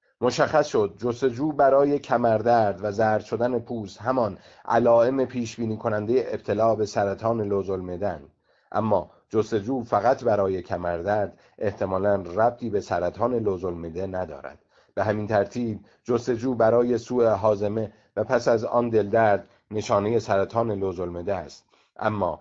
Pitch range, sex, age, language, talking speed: 100-115 Hz, male, 50-69, Persian, 125 wpm